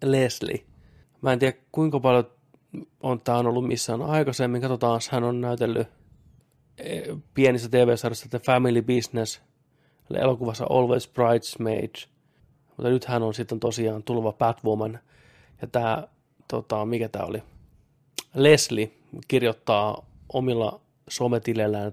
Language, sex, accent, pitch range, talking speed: Finnish, male, native, 115-130 Hz, 115 wpm